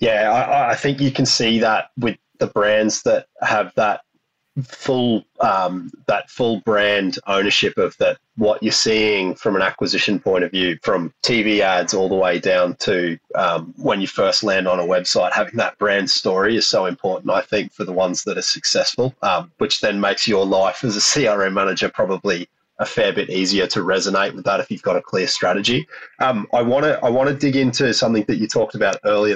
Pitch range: 95-135 Hz